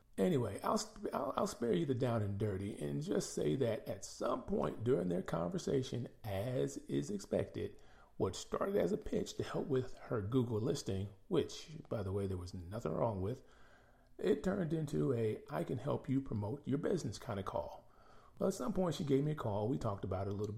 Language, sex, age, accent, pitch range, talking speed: English, male, 40-59, American, 100-135 Hz, 205 wpm